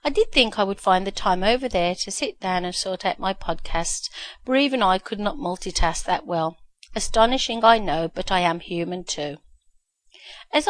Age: 40-59